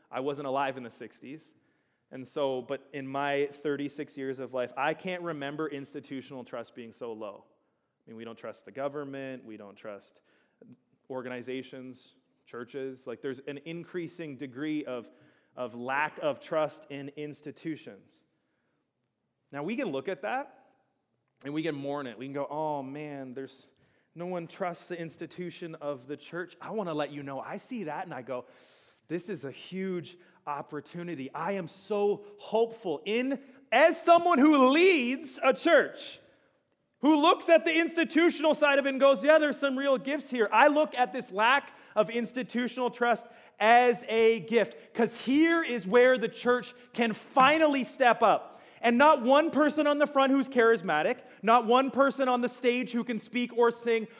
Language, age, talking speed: English, 30-49, 175 wpm